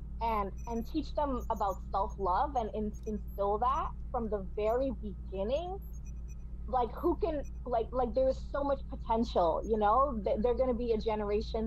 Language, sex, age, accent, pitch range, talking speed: English, female, 20-39, American, 210-265 Hz, 155 wpm